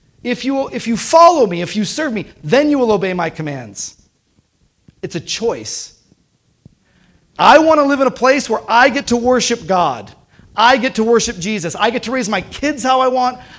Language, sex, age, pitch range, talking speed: English, male, 30-49, 165-230 Hz, 200 wpm